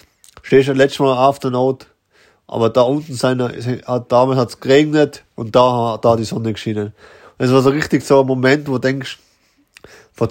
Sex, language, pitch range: male, German, 105-130 Hz